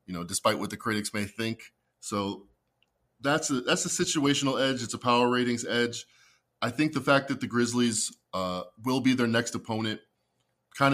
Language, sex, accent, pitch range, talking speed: English, male, American, 100-130 Hz, 185 wpm